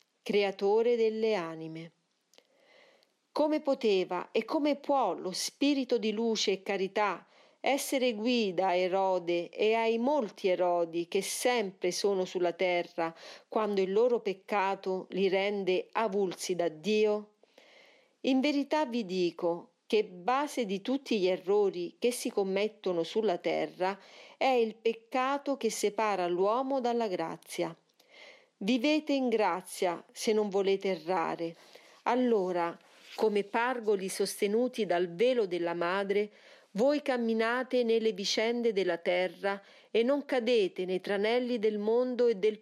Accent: native